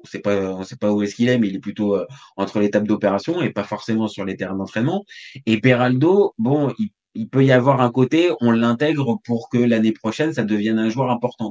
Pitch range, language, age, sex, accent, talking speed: 110-140 Hz, French, 20-39, male, French, 240 wpm